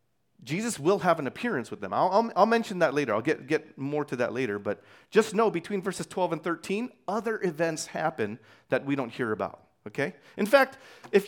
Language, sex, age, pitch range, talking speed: English, male, 30-49, 140-205 Hz, 215 wpm